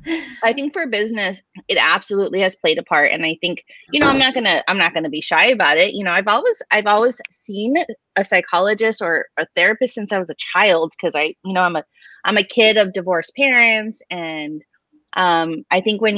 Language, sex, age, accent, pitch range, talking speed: English, female, 20-39, American, 180-230 Hz, 220 wpm